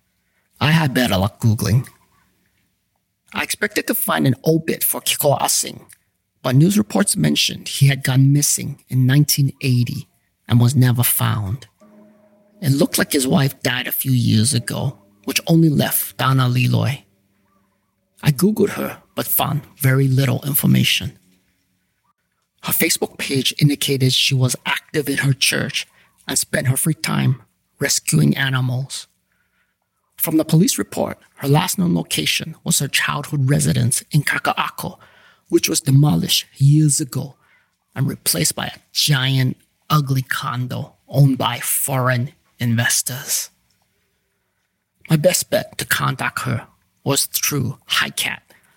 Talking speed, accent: 135 wpm, American